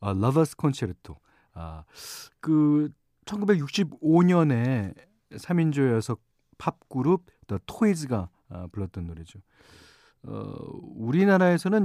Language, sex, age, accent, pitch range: Korean, male, 40-59, native, 105-160 Hz